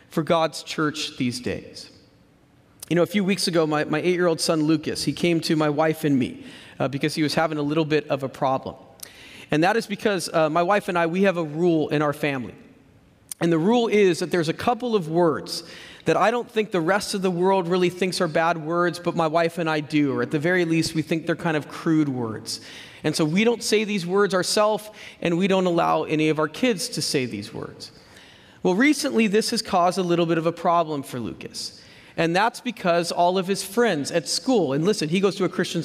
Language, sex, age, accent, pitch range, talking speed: English, male, 40-59, American, 155-210 Hz, 235 wpm